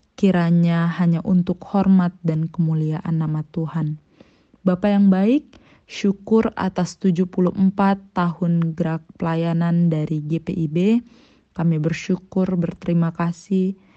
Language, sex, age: Indonesian, female, 20-39